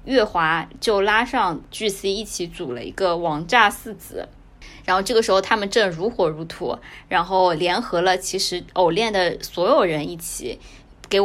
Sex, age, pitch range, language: female, 20-39, 170-205 Hz, Chinese